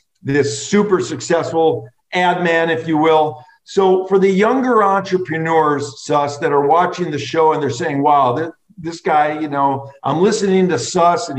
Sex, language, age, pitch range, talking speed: male, English, 50-69, 150-200 Hz, 170 wpm